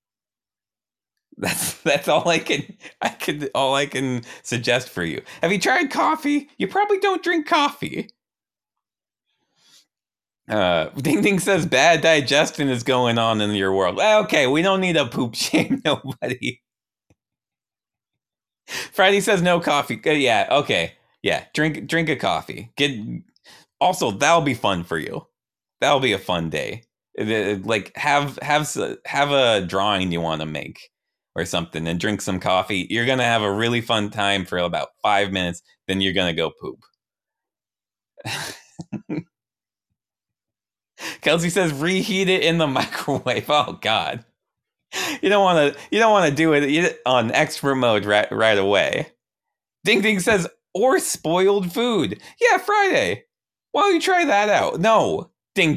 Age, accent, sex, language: 30-49, American, male, English